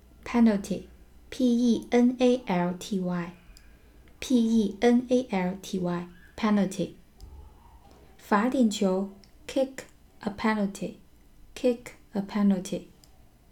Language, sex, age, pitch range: Chinese, female, 20-39, 180-235 Hz